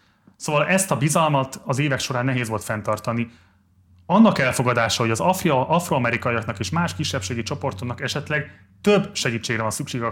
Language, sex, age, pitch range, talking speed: Hungarian, male, 30-49, 115-150 Hz, 155 wpm